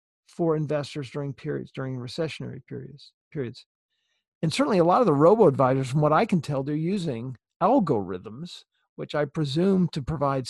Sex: male